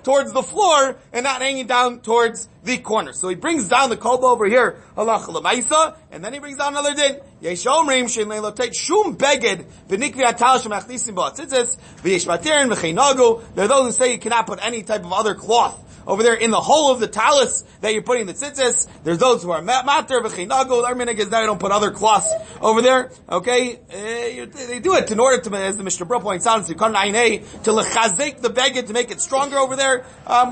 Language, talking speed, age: English, 165 wpm, 30-49